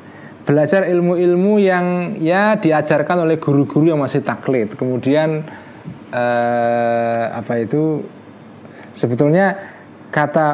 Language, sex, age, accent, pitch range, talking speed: Indonesian, male, 20-39, native, 125-165 Hz, 90 wpm